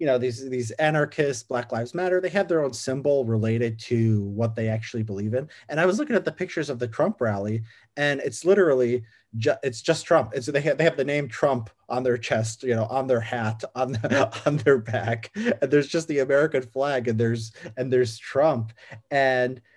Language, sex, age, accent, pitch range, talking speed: English, male, 30-49, American, 110-150 Hz, 220 wpm